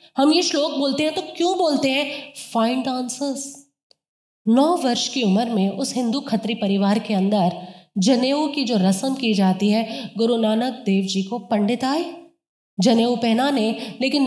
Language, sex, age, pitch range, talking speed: Hindi, female, 20-39, 230-310 Hz, 165 wpm